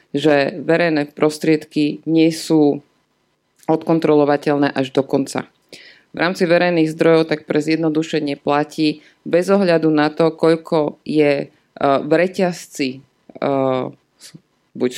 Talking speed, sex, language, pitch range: 105 wpm, female, Slovak, 145-160 Hz